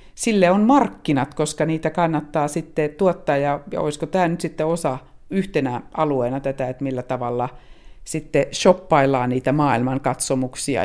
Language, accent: Finnish, native